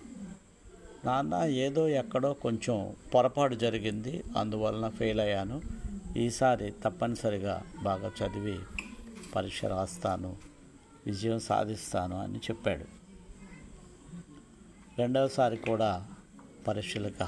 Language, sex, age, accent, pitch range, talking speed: Telugu, male, 50-69, native, 105-150 Hz, 75 wpm